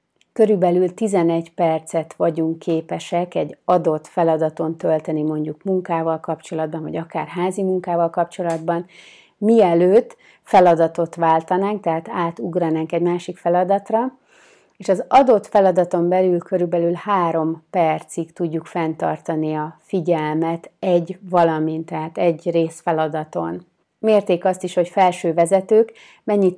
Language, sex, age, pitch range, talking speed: Hungarian, female, 30-49, 160-185 Hz, 110 wpm